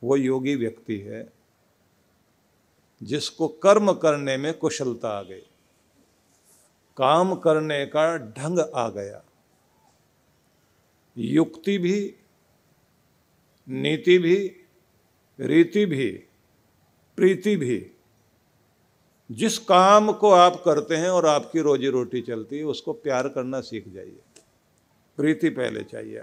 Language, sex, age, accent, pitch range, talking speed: Hindi, male, 50-69, native, 135-190 Hz, 105 wpm